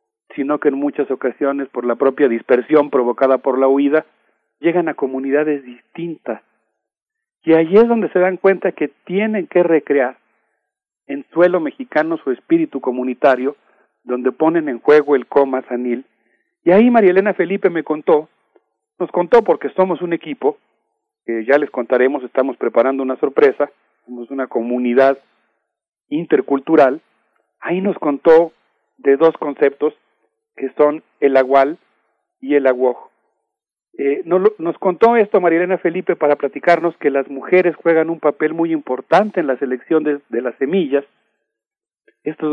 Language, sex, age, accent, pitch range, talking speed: Spanish, male, 40-59, Mexican, 135-180 Hz, 150 wpm